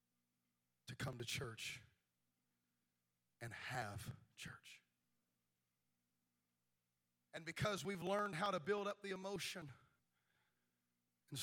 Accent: American